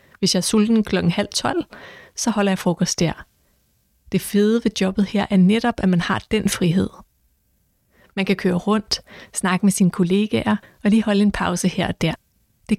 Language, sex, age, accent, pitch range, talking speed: Danish, female, 30-49, native, 180-205 Hz, 190 wpm